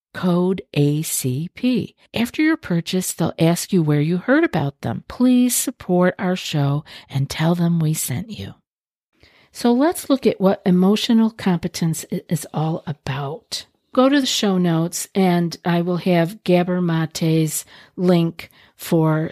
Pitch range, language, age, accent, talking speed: 160-200 Hz, English, 50-69, American, 145 wpm